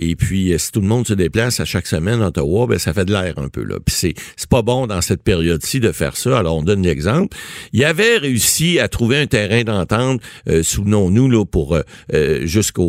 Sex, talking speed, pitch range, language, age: male, 235 wpm, 95-135 Hz, French, 60-79